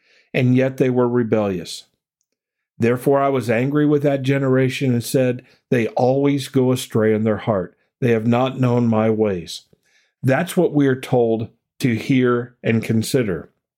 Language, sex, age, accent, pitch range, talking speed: English, male, 50-69, American, 110-145 Hz, 155 wpm